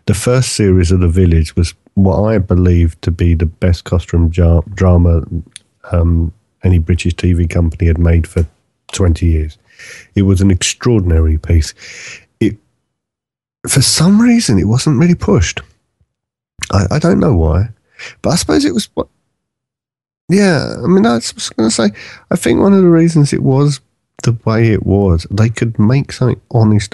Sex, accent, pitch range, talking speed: male, British, 85-115 Hz, 170 wpm